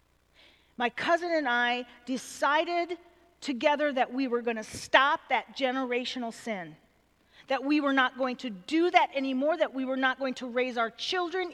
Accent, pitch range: American, 235-340 Hz